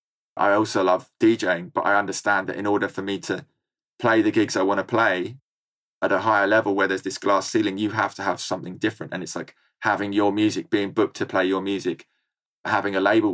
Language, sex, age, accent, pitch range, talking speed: English, male, 20-39, British, 100-120 Hz, 225 wpm